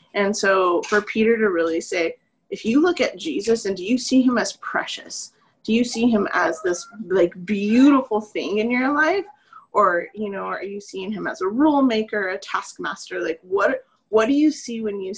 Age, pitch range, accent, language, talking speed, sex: 30-49, 210-290 Hz, American, English, 205 wpm, female